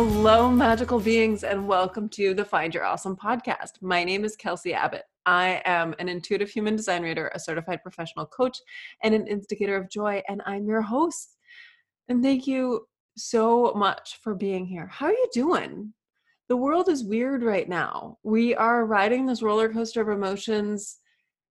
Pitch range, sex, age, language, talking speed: 185-235 Hz, female, 20-39, English, 175 wpm